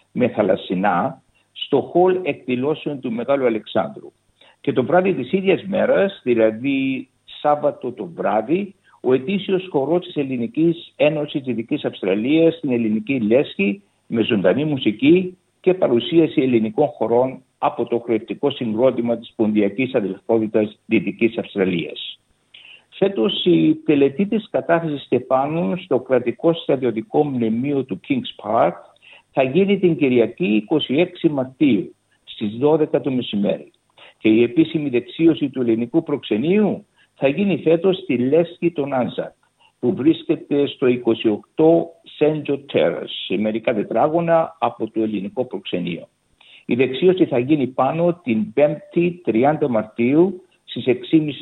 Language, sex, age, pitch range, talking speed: Greek, male, 60-79, 120-170 Hz, 125 wpm